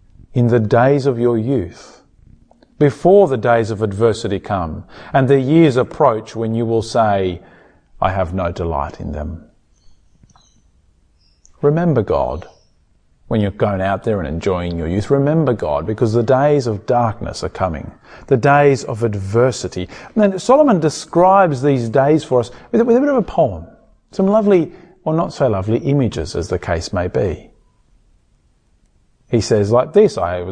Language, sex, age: English, male, 40-59